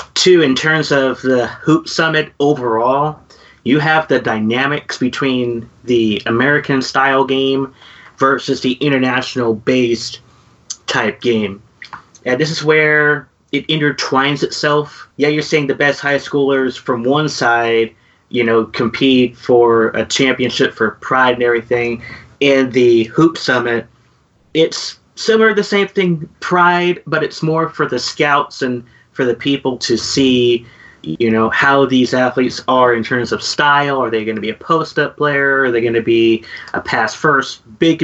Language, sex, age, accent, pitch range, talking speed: English, male, 30-49, American, 120-145 Hz, 160 wpm